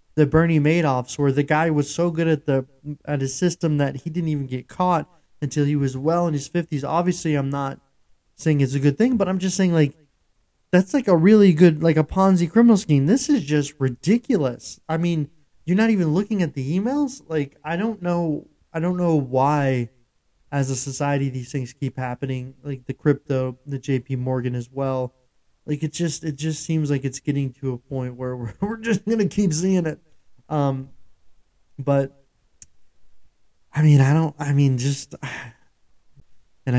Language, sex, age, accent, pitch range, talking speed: English, male, 20-39, American, 130-160 Hz, 190 wpm